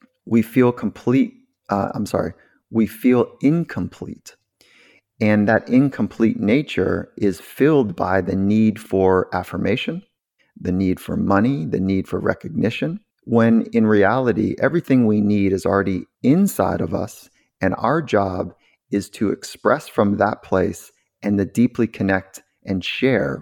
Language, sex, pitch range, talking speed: English, male, 100-125 Hz, 140 wpm